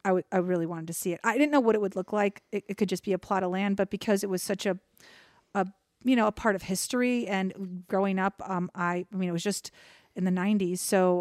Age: 40-59